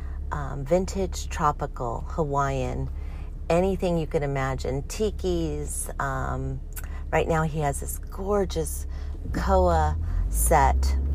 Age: 40-59